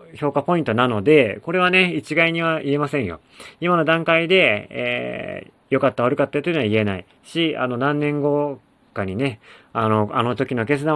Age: 30-49